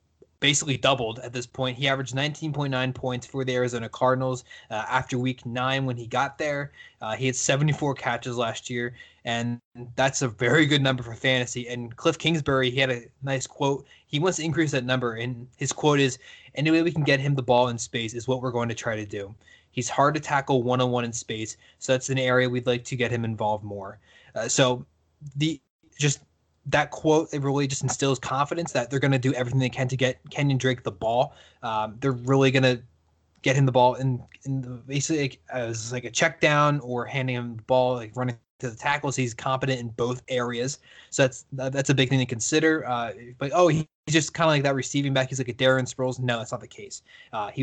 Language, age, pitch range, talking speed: English, 20-39, 120-140 Hz, 230 wpm